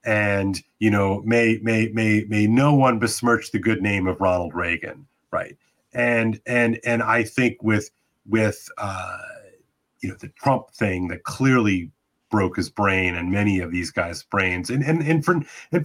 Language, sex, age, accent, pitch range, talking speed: English, male, 30-49, American, 105-130 Hz, 175 wpm